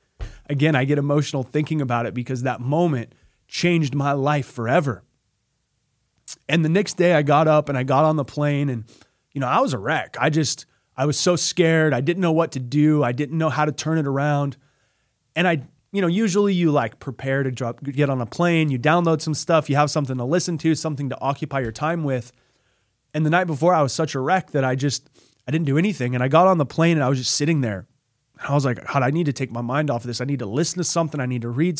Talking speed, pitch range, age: 255 wpm, 125-160 Hz, 20-39